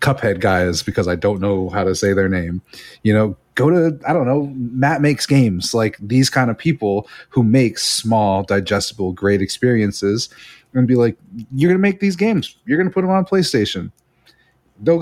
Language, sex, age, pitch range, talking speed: English, male, 30-49, 100-125 Hz, 195 wpm